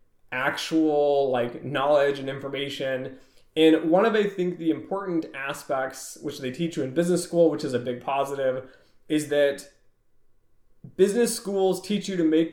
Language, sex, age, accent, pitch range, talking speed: English, male, 20-39, American, 135-165 Hz, 160 wpm